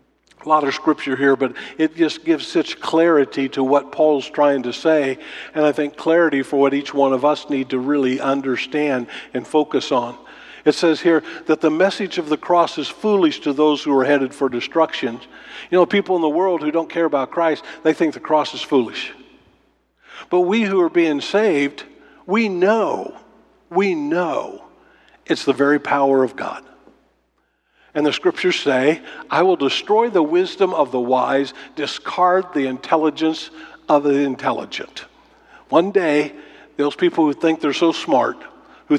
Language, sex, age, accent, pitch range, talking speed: English, male, 50-69, American, 135-170 Hz, 175 wpm